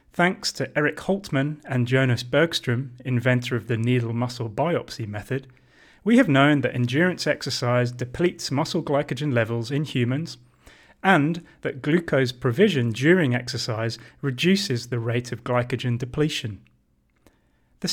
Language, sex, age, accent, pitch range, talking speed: English, male, 30-49, British, 125-160 Hz, 130 wpm